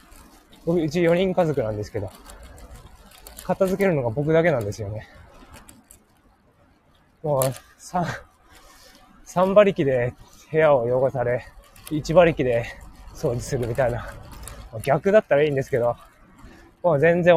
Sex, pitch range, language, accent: male, 120-160 Hz, Japanese, native